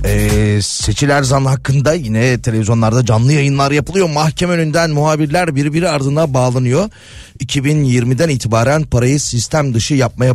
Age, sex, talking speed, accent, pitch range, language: 40-59, male, 120 wpm, native, 120-155 Hz, Turkish